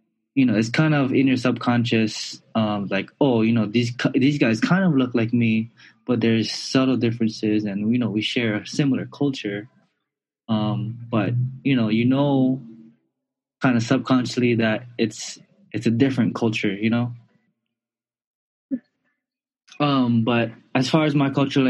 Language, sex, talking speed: English, male, 160 wpm